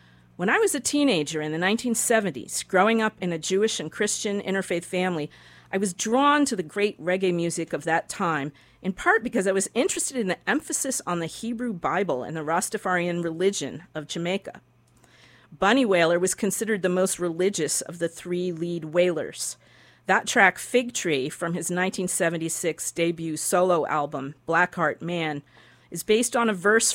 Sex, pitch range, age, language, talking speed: female, 170-215 Hz, 50-69, English, 170 wpm